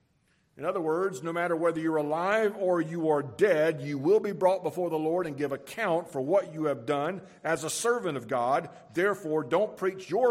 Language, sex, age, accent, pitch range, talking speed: English, male, 50-69, American, 140-185 Hz, 210 wpm